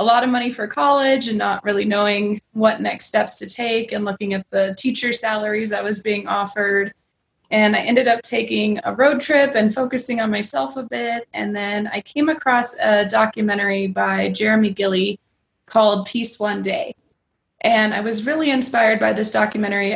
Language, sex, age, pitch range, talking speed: English, female, 20-39, 200-235 Hz, 185 wpm